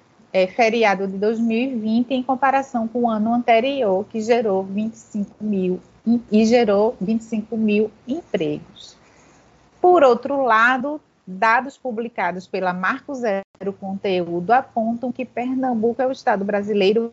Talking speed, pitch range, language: 120 wpm, 200-255 Hz, Portuguese